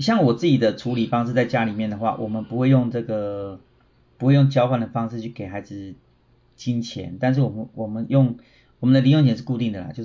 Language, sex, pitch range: Chinese, male, 105-130 Hz